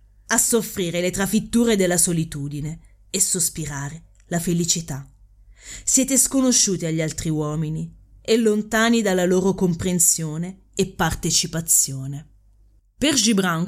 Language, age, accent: Italian, 30-49, native